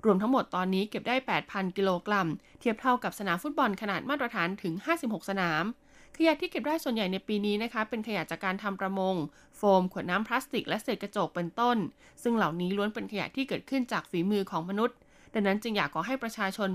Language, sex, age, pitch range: Thai, female, 20-39, 190-245 Hz